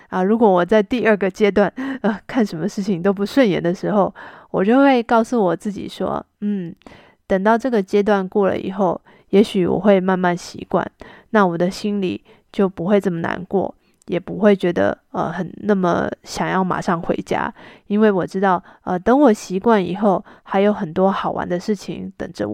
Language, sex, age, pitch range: Chinese, female, 20-39, 185-215 Hz